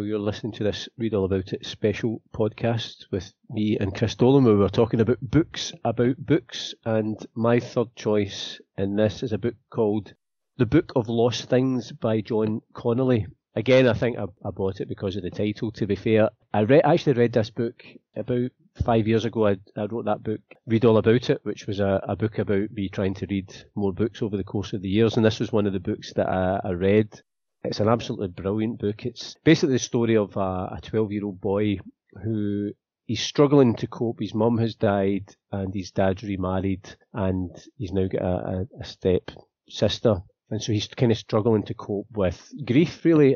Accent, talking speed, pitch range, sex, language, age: British, 205 wpm, 100-120 Hz, male, English, 30-49